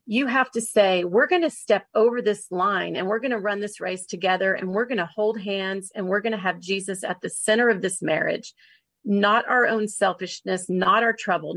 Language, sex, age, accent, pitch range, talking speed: English, female, 40-59, American, 190-235 Hz, 230 wpm